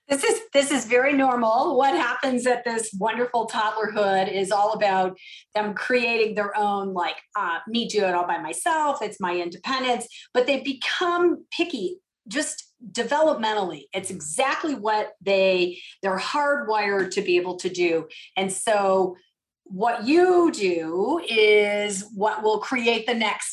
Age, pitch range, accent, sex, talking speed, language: 40-59, 195-250 Hz, American, female, 150 wpm, English